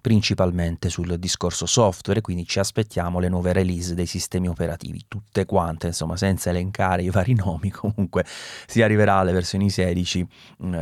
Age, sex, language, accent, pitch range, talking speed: 30-49, male, Italian, native, 90-115 Hz, 160 wpm